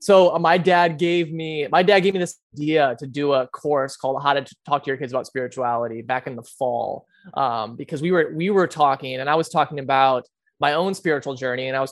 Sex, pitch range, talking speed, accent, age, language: male, 125-150 Hz, 240 wpm, American, 20-39, English